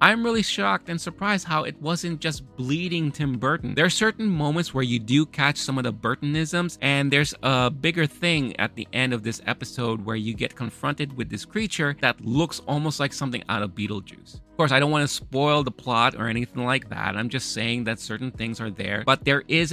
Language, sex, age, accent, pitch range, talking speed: English, male, 30-49, American, 115-160 Hz, 225 wpm